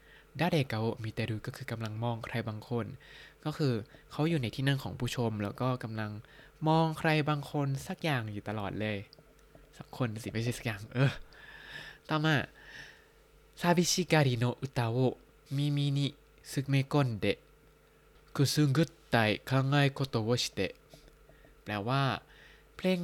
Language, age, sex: Thai, 20-39, male